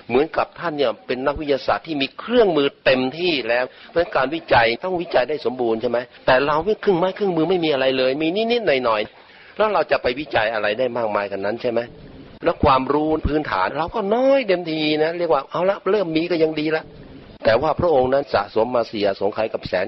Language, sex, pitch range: Thai, male, 115-160 Hz